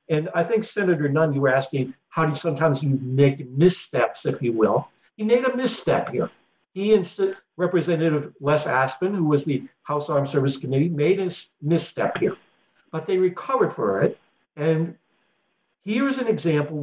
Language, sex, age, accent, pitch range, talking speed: English, male, 60-79, American, 150-195 Hz, 175 wpm